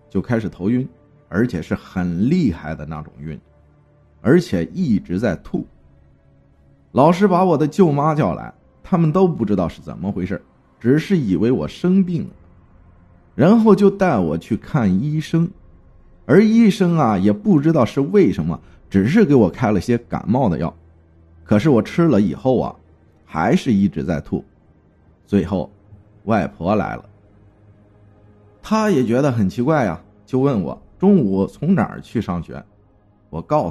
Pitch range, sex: 90-145 Hz, male